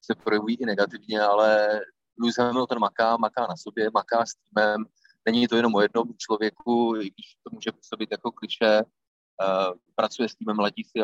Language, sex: Czech, male